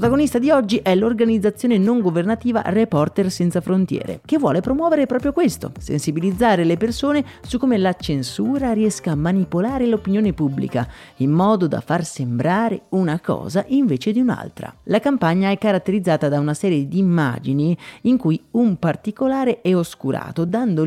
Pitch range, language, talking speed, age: 145-230 Hz, Italian, 150 wpm, 30-49